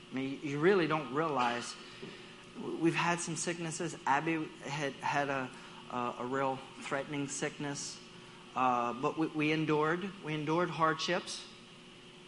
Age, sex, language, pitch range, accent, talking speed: 40-59, male, English, 130-180 Hz, American, 130 wpm